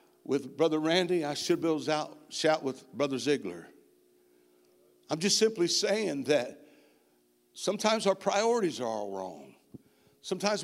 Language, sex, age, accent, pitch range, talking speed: English, male, 60-79, American, 135-210 Hz, 130 wpm